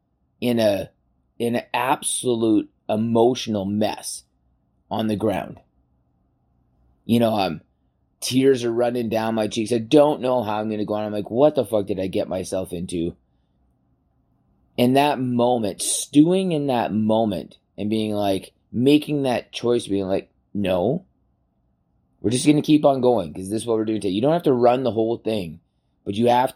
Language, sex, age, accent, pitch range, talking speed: English, male, 20-39, American, 95-125 Hz, 180 wpm